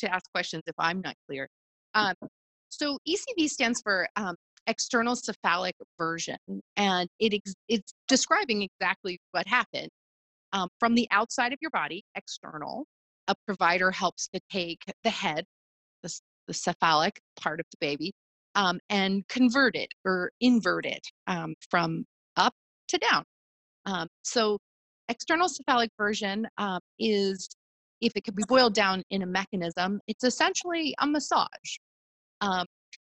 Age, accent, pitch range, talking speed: 30-49, American, 180-240 Hz, 145 wpm